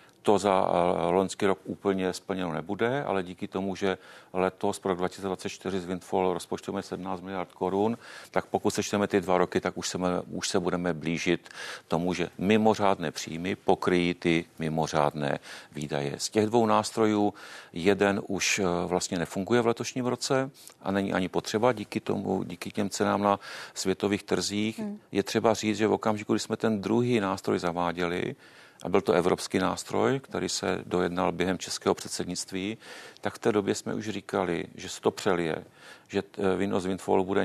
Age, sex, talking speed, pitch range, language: 40-59, male, 165 wpm, 90-110 Hz, Czech